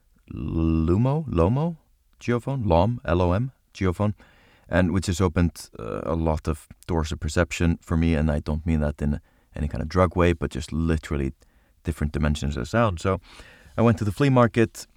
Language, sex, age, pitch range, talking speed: English, male, 30-49, 80-95 Hz, 175 wpm